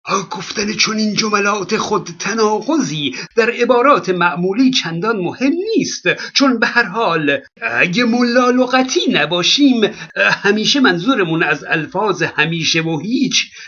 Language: Persian